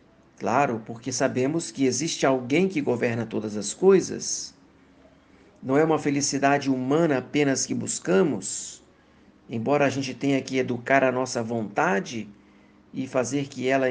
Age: 50-69